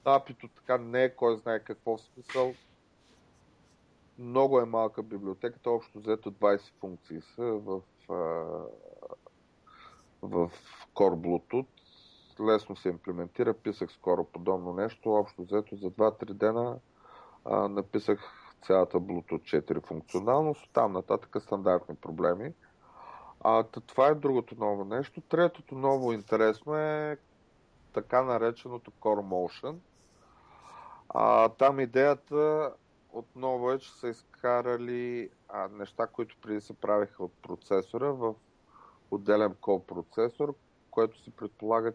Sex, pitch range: male, 100-125 Hz